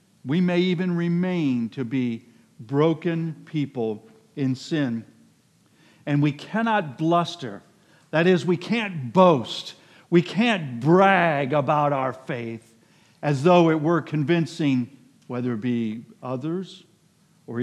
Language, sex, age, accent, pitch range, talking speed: English, male, 50-69, American, 130-185 Hz, 120 wpm